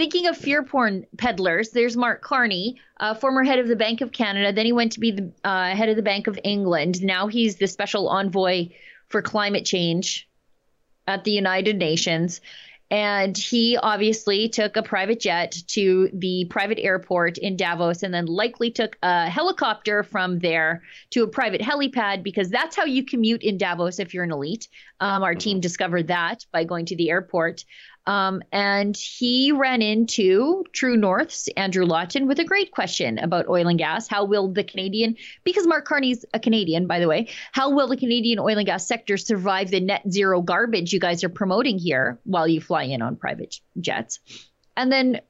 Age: 30-49